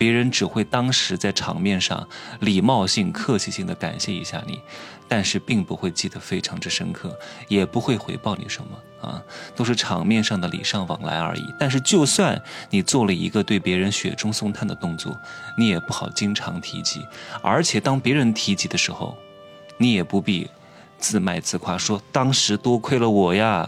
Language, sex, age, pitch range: Chinese, male, 20-39, 100-130 Hz